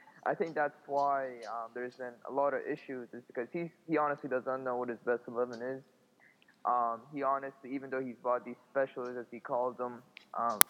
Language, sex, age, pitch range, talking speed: English, male, 20-39, 120-140 Hz, 200 wpm